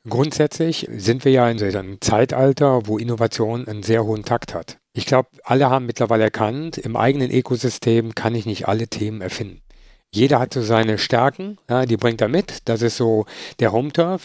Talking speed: 190 wpm